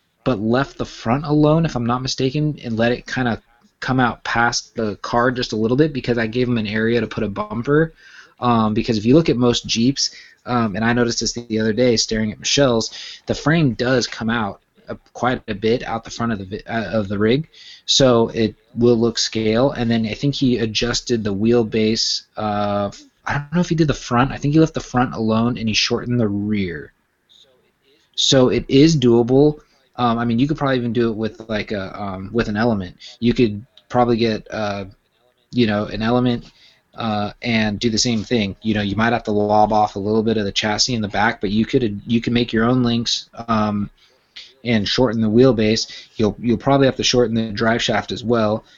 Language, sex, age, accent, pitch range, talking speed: English, male, 20-39, American, 110-125 Hz, 225 wpm